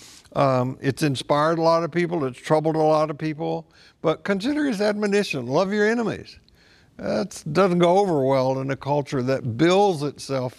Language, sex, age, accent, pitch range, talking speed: English, male, 60-79, American, 130-155 Hz, 175 wpm